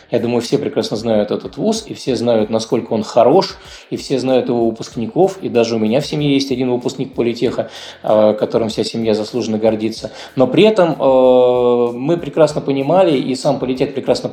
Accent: native